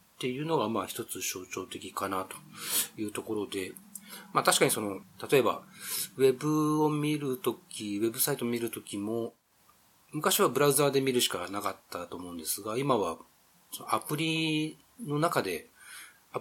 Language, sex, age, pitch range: Japanese, male, 40-59, 105-140 Hz